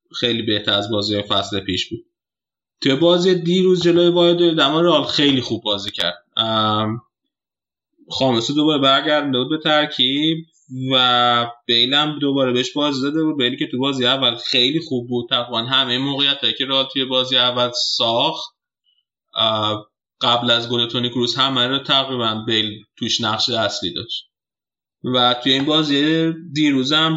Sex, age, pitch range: male, 20-39, 120-145 Hz